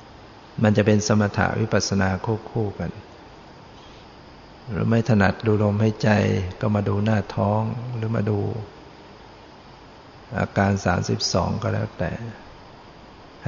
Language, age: Thai, 60-79